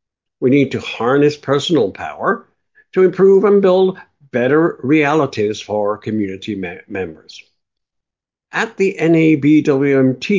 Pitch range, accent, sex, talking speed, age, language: 115-160 Hz, American, male, 105 wpm, 60-79, English